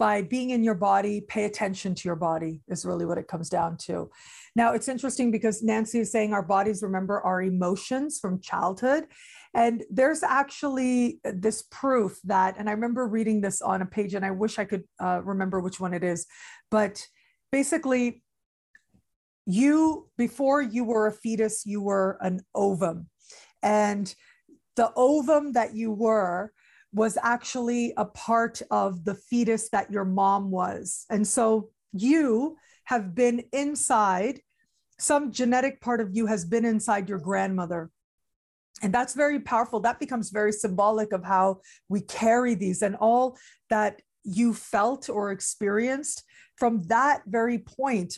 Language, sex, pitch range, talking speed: English, female, 195-240 Hz, 155 wpm